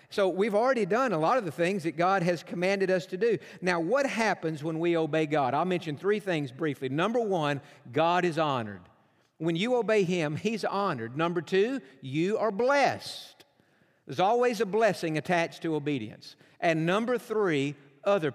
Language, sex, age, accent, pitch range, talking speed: English, male, 50-69, American, 160-205 Hz, 180 wpm